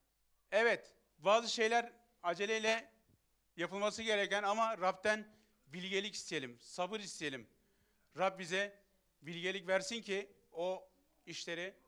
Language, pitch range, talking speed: English, 175-230 Hz, 95 wpm